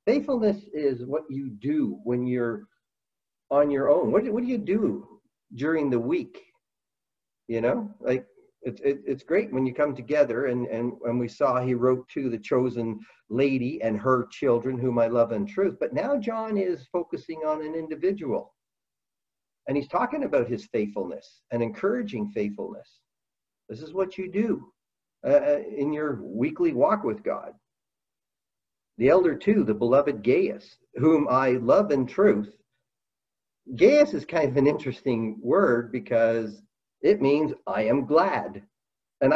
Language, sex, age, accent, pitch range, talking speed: English, male, 50-69, American, 120-170 Hz, 155 wpm